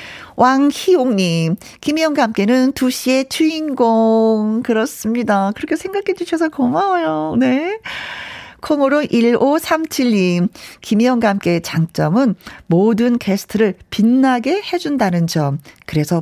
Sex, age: female, 40-59